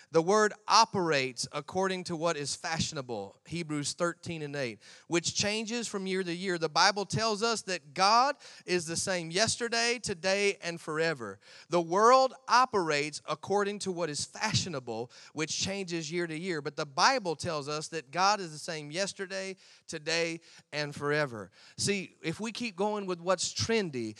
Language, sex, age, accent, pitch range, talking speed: English, male, 30-49, American, 155-195 Hz, 165 wpm